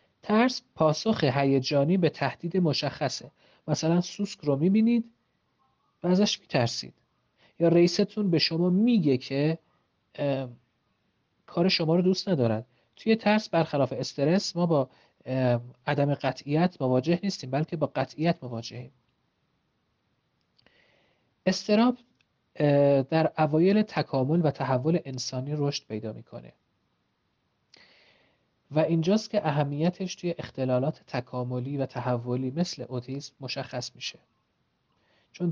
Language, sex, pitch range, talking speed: Persian, male, 130-175 Hz, 105 wpm